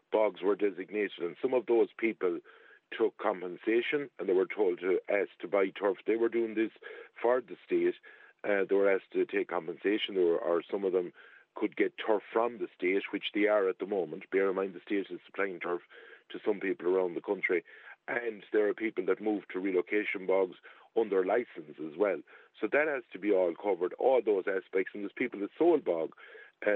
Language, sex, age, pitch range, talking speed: English, male, 50-69, 345-425 Hz, 215 wpm